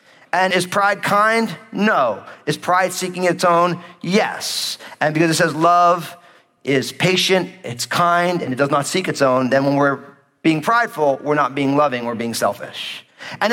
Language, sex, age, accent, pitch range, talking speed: English, male, 40-59, American, 155-220 Hz, 175 wpm